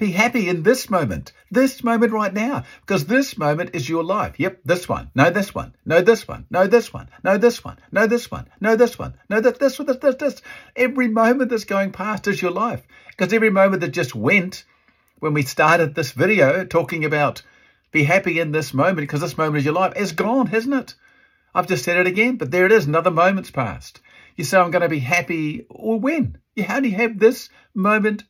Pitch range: 155-225 Hz